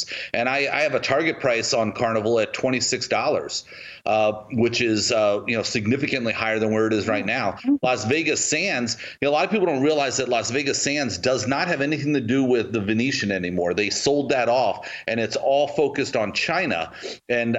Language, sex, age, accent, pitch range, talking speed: English, male, 40-59, American, 105-130 Hz, 200 wpm